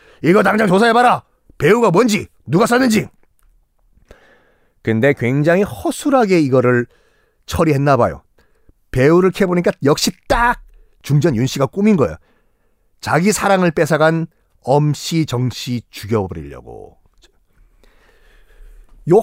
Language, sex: Korean, male